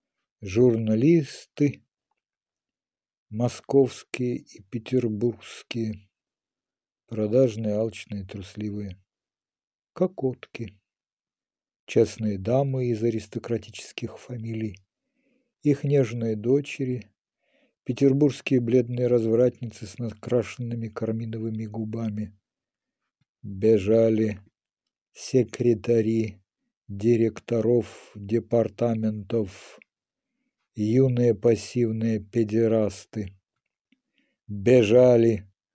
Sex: male